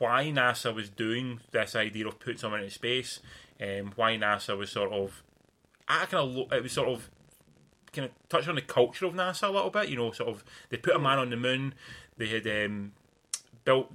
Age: 20-39